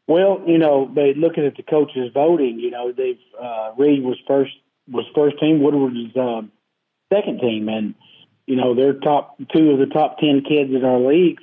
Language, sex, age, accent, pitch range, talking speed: English, male, 40-59, American, 125-140 Hz, 200 wpm